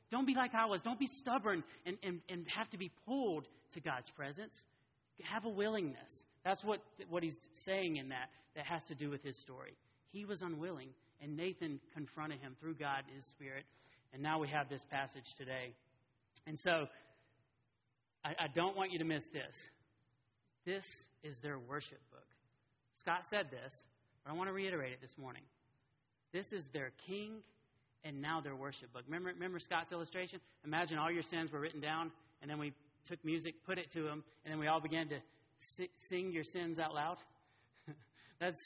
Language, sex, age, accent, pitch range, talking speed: English, male, 40-59, American, 135-185 Hz, 190 wpm